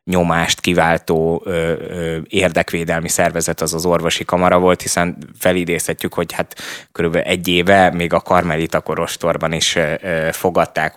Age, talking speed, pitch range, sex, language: 20-39, 120 wpm, 85-90 Hz, male, Hungarian